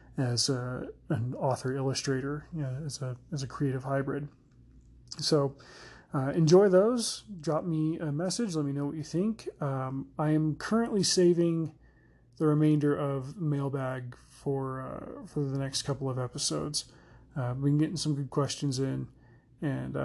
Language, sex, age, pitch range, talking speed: English, male, 30-49, 130-150 Hz, 155 wpm